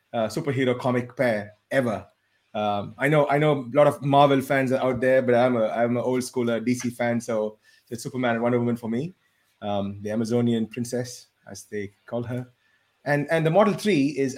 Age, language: 30-49, English